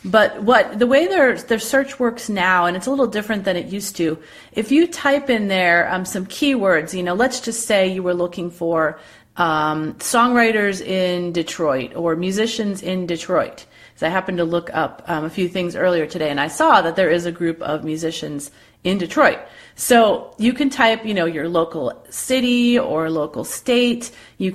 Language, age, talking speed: English, 30-49, 195 wpm